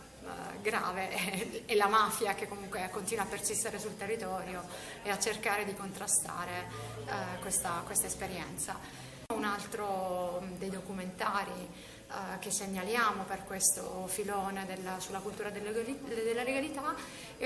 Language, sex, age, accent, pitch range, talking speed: Italian, female, 30-49, native, 200-255 Hz, 115 wpm